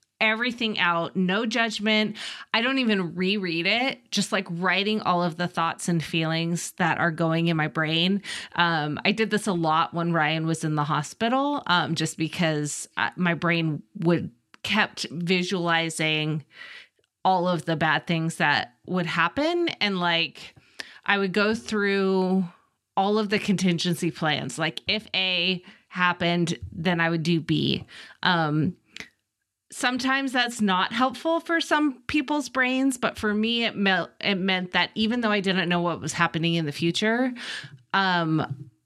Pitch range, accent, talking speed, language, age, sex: 165-210 Hz, American, 155 wpm, English, 30-49, female